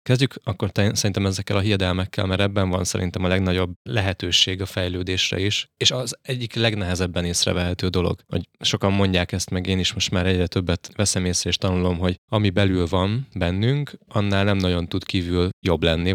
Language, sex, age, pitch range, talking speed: Hungarian, male, 20-39, 90-100 Hz, 180 wpm